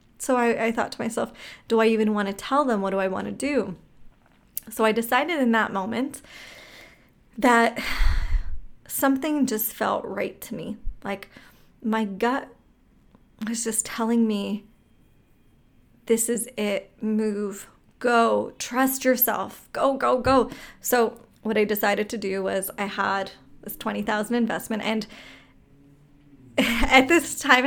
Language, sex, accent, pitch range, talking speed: English, female, American, 210-255 Hz, 145 wpm